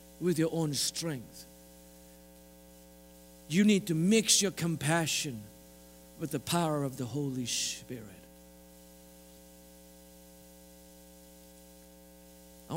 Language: English